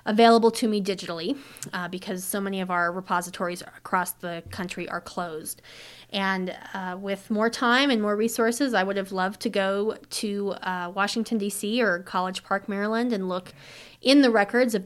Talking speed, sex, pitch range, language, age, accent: 180 wpm, female, 190-230 Hz, English, 30-49, American